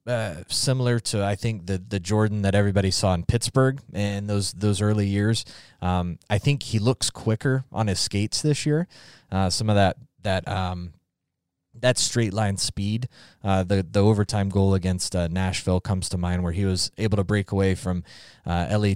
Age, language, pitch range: 20-39, English, 95-110 Hz